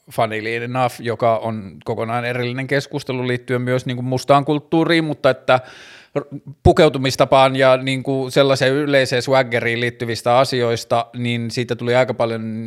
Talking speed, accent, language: 130 wpm, native, Finnish